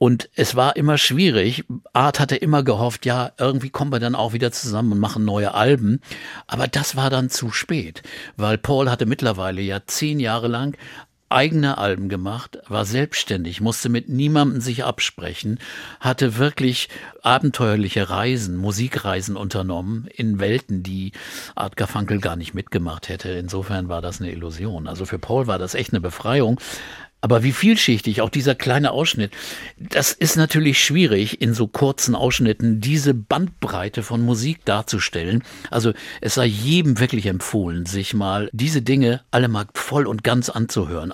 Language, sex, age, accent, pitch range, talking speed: German, male, 50-69, German, 105-135 Hz, 160 wpm